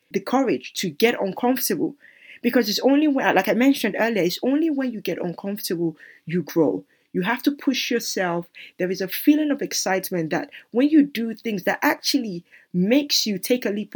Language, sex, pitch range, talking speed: English, female, 180-265 Hz, 190 wpm